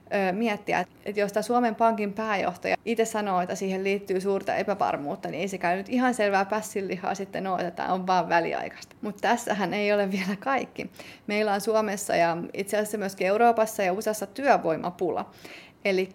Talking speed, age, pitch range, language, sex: 175 wpm, 30-49, 195-230 Hz, Finnish, female